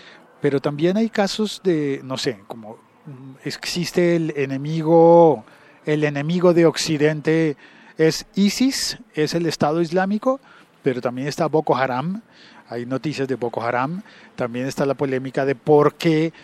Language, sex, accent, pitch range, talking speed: Spanish, male, Argentinian, 125-155 Hz, 140 wpm